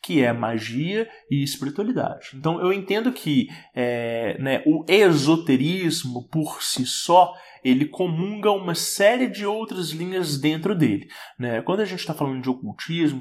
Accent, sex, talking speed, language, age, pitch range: Brazilian, male, 145 wpm, English, 20-39, 135-175 Hz